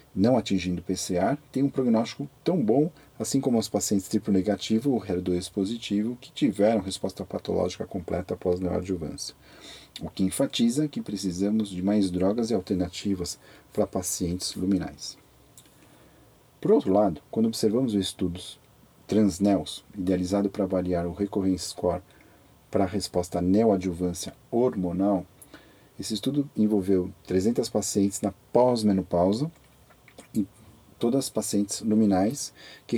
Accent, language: Brazilian, Portuguese